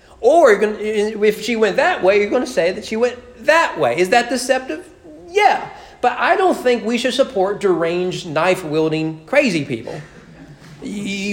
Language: English